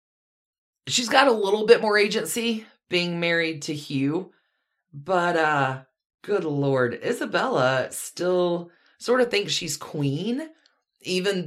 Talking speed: 120 wpm